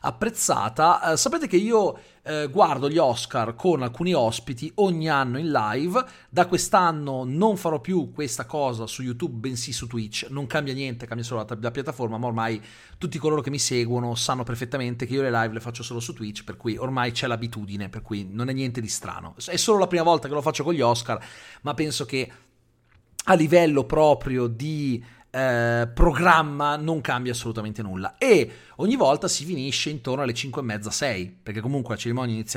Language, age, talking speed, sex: Italian, 40-59, 195 wpm, male